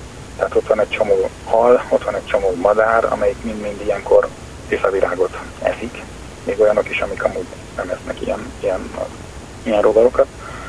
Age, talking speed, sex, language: 40-59, 150 wpm, male, Hungarian